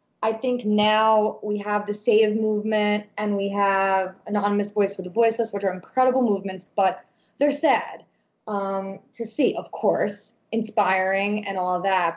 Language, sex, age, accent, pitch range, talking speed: English, female, 20-39, American, 185-215 Hz, 165 wpm